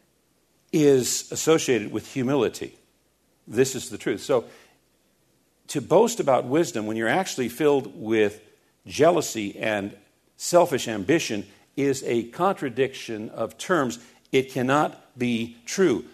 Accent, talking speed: American, 115 wpm